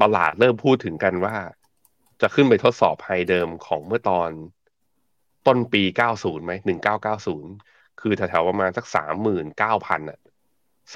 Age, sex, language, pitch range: 20-39, male, Thai, 90-110 Hz